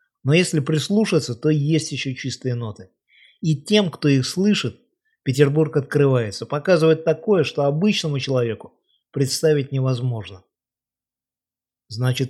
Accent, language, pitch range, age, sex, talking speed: native, Russian, 130-170 Hz, 30-49, male, 110 wpm